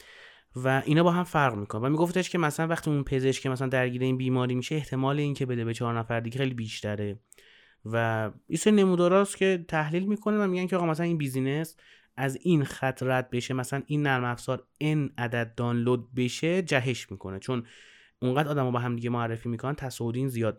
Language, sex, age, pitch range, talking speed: Persian, male, 30-49, 115-145 Hz, 180 wpm